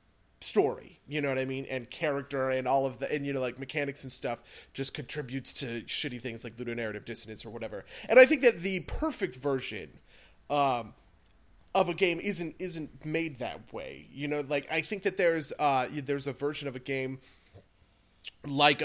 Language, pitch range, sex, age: English, 120-160 Hz, male, 30-49